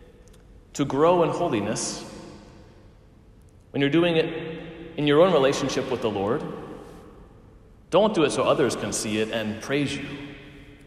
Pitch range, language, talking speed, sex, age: 110-150 Hz, English, 145 wpm, male, 30-49